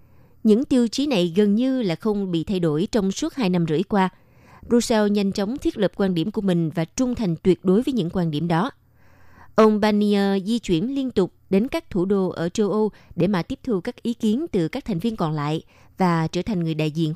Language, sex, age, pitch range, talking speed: Vietnamese, female, 20-39, 165-220 Hz, 240 wpm